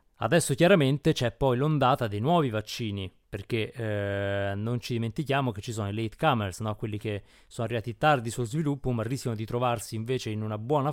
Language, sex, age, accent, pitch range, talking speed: Italian, male, 20-39, native, 105-125 Hz, 190 wpm